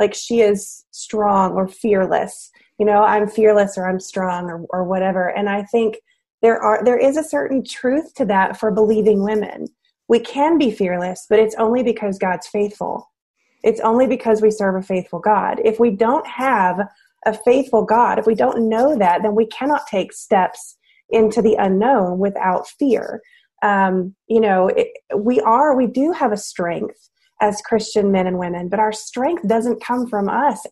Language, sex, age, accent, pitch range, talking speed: English, female, 30-49, American, 200-265 Hz, 185 wpm